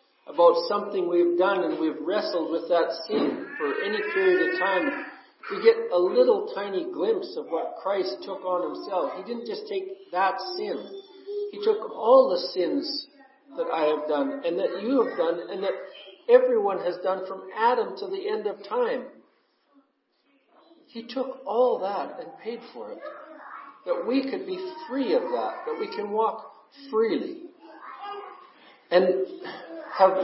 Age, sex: 50-69, male